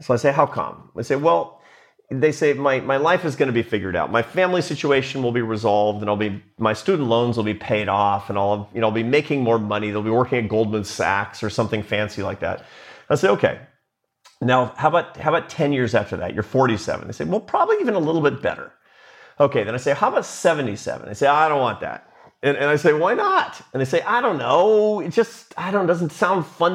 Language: English